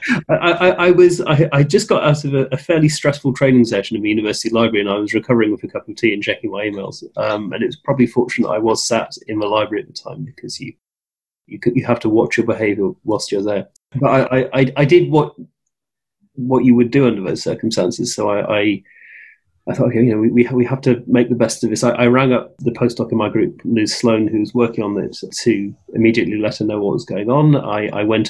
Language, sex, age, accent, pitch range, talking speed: English, male, 30-49, British, 110-135 Hz, 240 wpm